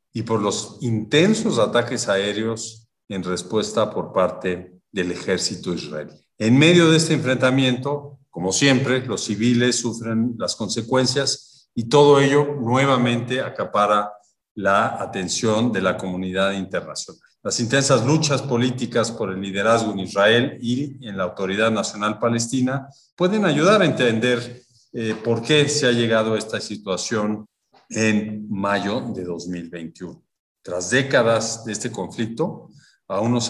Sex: male